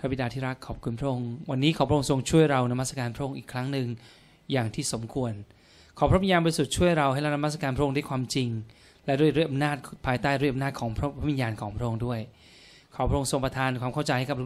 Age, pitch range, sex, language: 20-39, 115-145 Hz, male, Thai